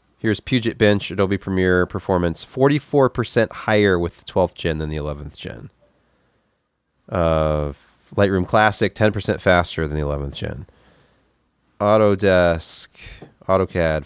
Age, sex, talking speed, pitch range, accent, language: 30-49, male, 130 wpm, 85-110 Hz, American, English